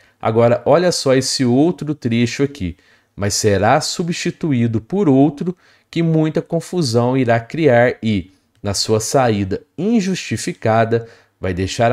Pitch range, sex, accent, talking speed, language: 105-140 Hz, male, Brazilian, 120 wpm, English